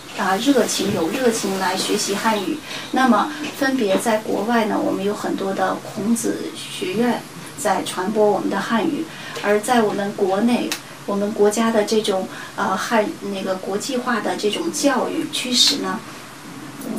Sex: female